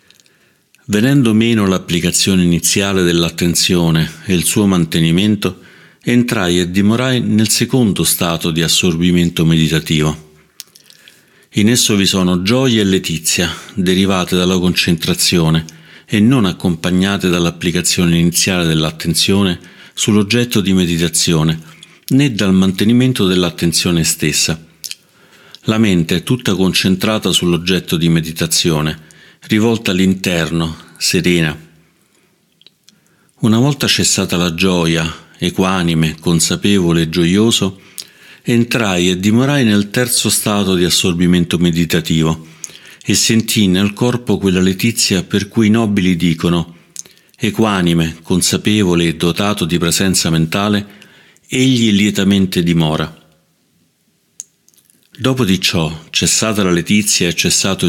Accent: native